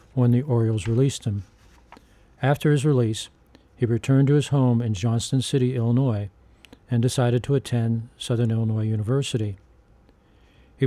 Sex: male